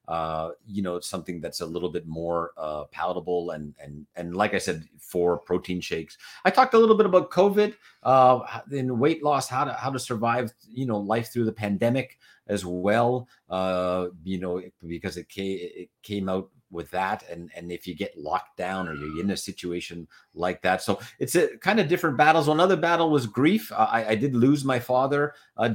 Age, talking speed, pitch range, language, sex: 40-59, 205 wpm, 90-130 Hz, English, male